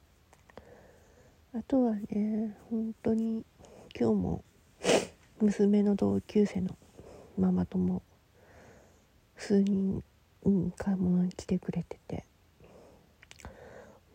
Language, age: Japanese, 40-59